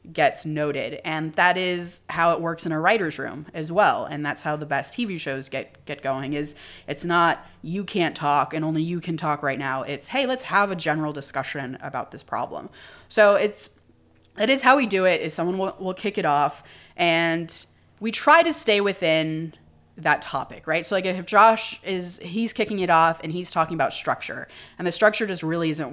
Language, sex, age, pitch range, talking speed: English, female, 20-39, 150-190 Hz, 210 wpm